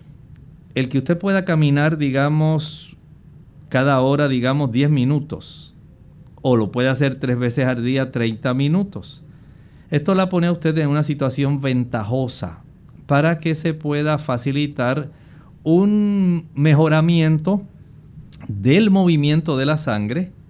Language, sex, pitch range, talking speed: Spanish, male, 125-155 Hz, 125 wpm